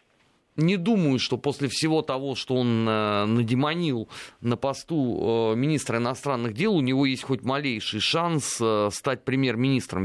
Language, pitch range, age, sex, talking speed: Russian, 110-145 Hz, 30-49, male, 150 wpm